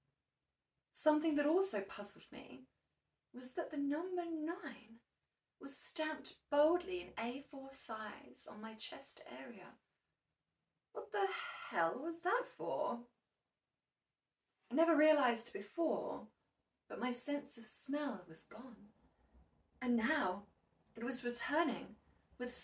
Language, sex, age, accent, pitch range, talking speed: English, female, 30-49, British, 200-285 Hz, 115 wpm